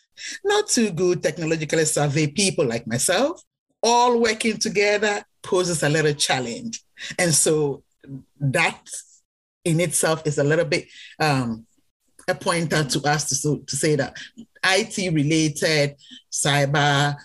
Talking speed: 125 wpm